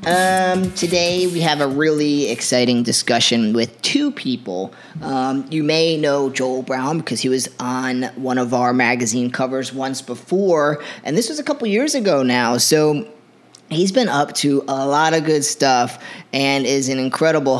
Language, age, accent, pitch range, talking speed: English, 30-49, American, 125-155 Hz, 170 wpm